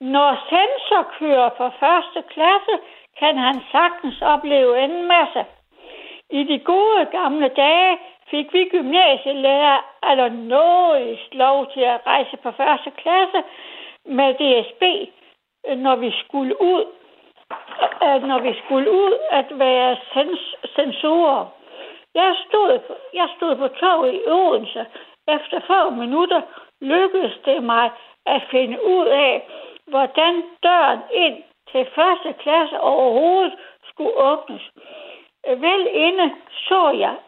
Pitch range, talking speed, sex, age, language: 270-355 Hz, 115 wpm, female, 60-79, Danish